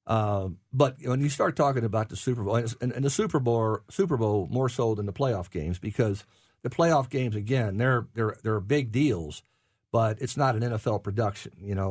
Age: 50-69